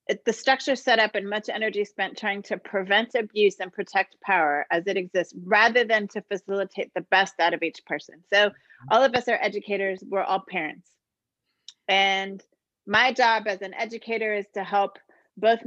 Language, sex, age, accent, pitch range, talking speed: English, female, 30-49, American, 195-240 Hz, 180 wpm